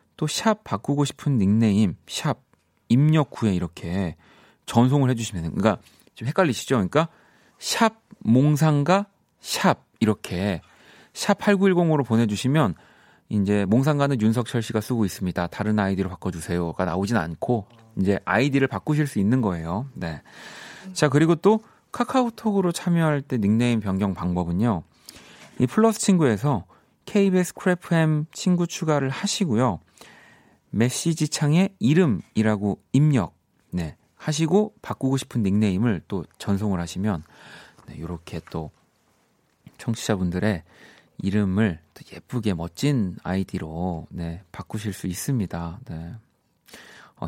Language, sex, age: Korean, male, 30-49